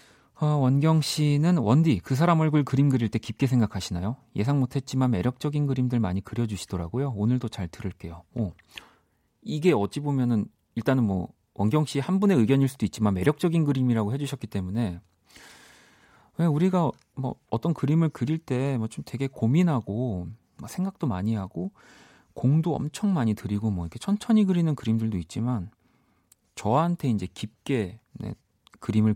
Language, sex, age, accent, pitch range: Korean, male, 40-59, native, 105-145 Hz